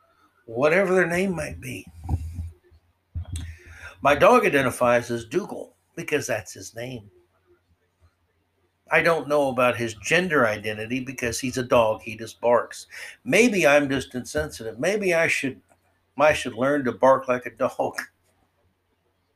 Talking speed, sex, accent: 130 wpm, male, American